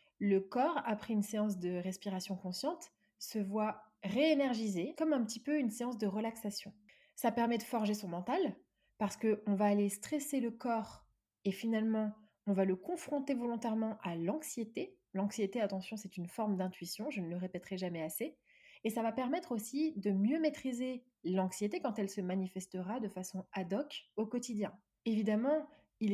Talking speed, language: 170 wpm, French